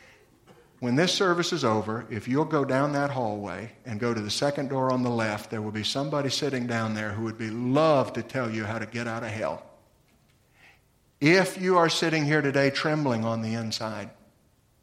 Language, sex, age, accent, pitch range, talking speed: English, male, 50-69, American, 110-140 Hz, 200 wpm